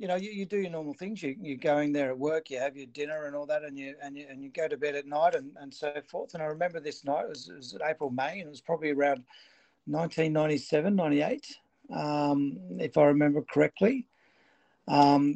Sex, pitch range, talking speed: male, 140-175 Hz, 235 wpm